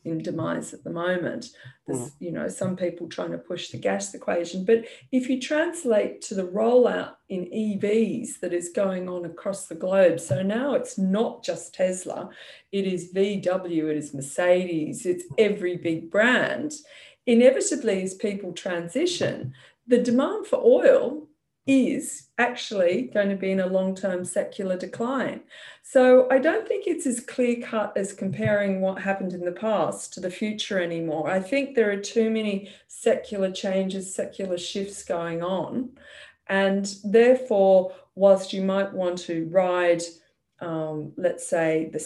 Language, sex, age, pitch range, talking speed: English, female, 40-59, 180-235 Hz, 155 wpm